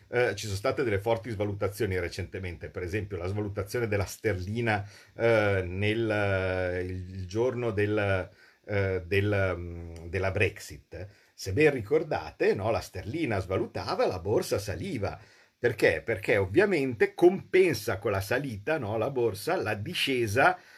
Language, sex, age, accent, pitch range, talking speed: Italian, male, 50-69, native, 95-115 Hz, 135 wpm